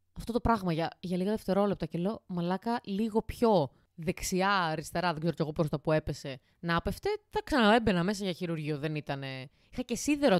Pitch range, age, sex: 160-220 Hz, 20-39, female